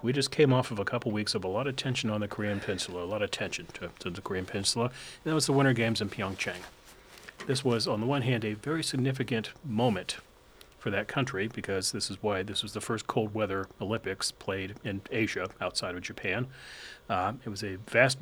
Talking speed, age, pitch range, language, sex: 225 wpm, 40-59, 95-130 Hz, English, male